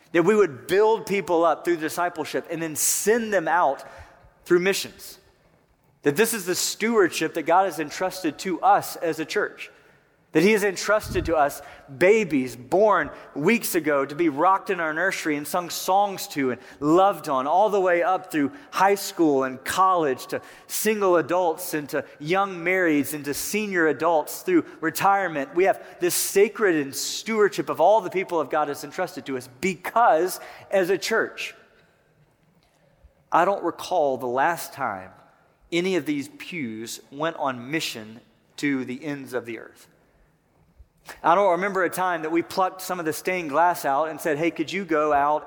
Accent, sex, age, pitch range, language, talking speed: American, male, 30-49, 150-190 Hz, English, 175 wpm